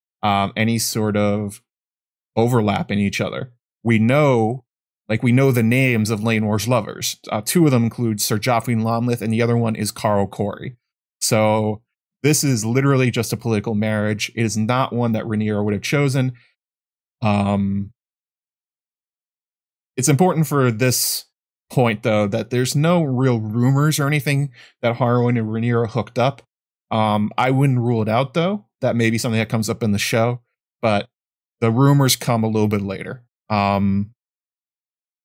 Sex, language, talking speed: male, English, 165 wpm